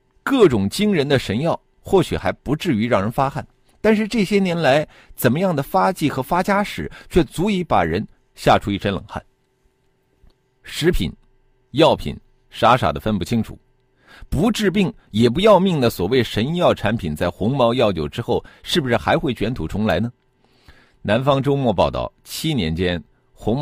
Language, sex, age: Chinese, male, 50-69